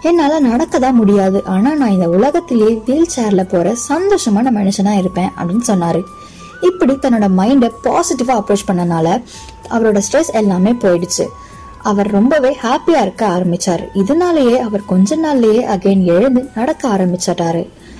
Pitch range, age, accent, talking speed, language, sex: 190-260 Hz, 20-39, native, 70 wpm, Tamil, female